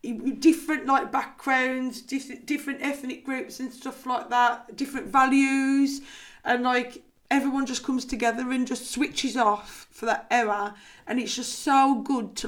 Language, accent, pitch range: English, British, 215-255 Hz